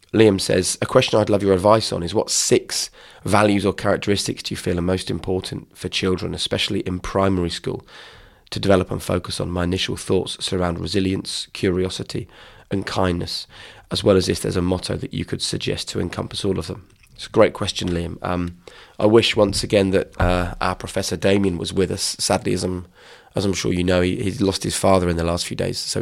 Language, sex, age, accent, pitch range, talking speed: English, male, 20-39, British, 90-100 Hz, 210 wpm